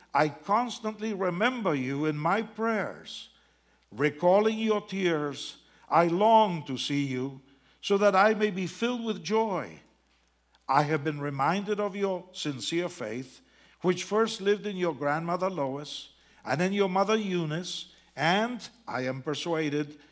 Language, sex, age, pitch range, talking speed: English, male, 50-69, 150-210 Hz, 140 wpm